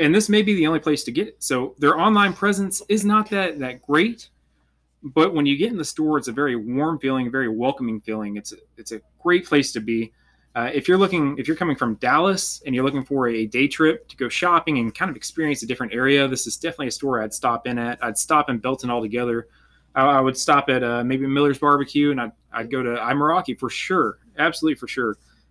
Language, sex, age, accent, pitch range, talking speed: English, male, 20-39, American, 120-160 Hz, 240 wpm